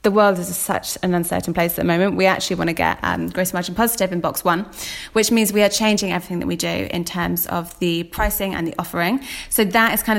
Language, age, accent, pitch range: English, 20-39, British, 170-205 Hz